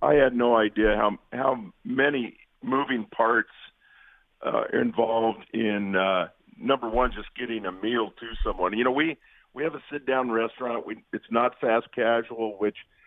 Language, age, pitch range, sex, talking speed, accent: English, 50-69, 110-140 Hz, male, 170 wpm, American